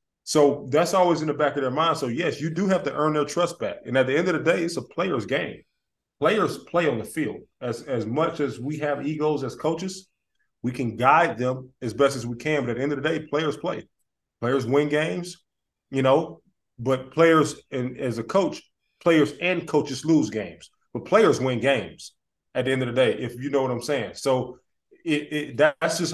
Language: English